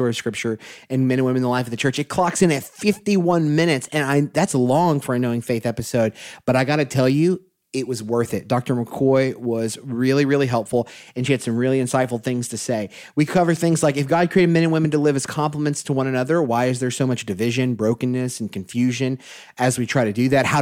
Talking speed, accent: 245 wpm, American